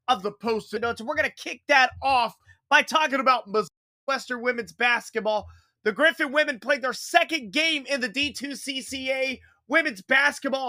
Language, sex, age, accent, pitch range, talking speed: English, male, 30-49, American, 255-330 Hz, 170 wpm